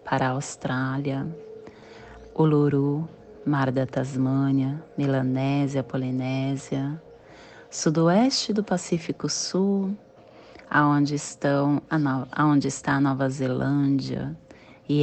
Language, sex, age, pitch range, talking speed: Portuguese, female, 30-49, 135-225 Hz, 90 wpm